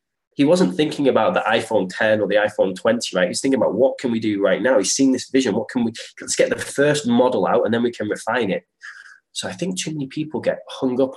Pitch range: 110-180 Hz